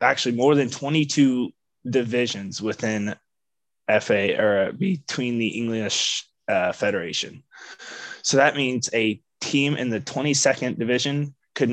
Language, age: English, 20-39